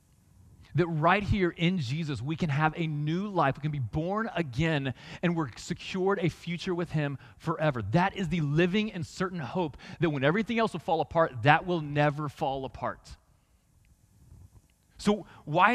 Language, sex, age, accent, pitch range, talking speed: English, male, 30-49, American, 130-175 Hz, 170 wpm